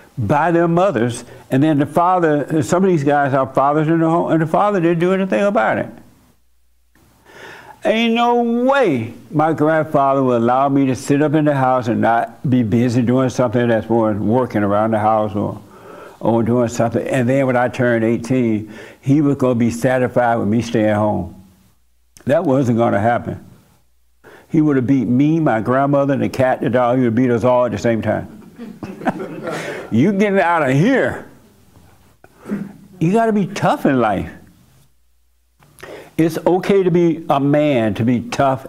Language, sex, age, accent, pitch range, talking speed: English, male, 60-79, American, 110-150 Hz, 175 wpm